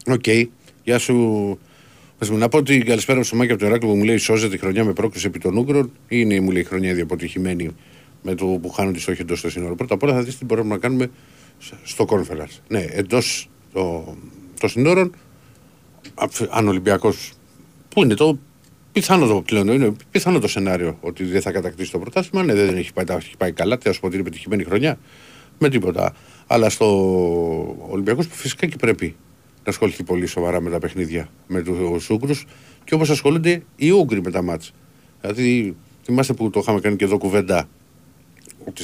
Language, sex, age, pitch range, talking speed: Greek, male, 50-69, 95-135 Hz, 175 wpm